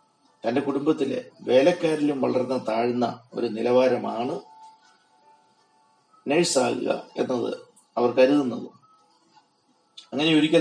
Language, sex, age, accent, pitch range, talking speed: Malayalam, male, 30-49, native, 120-155 Hz, 75 wpm